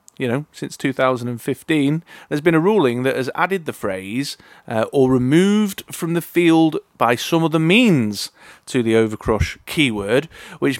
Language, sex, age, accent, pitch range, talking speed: English, male, 30-49, British, 115-165 Hz, 155 wpm